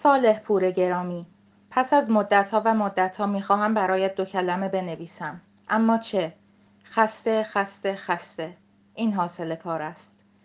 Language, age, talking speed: Persian, 30-49, 130 wpm